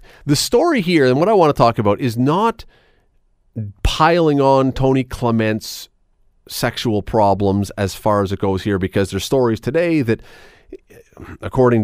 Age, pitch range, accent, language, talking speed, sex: 40-59, 100-150 Hz, American, English, 150 wpm, male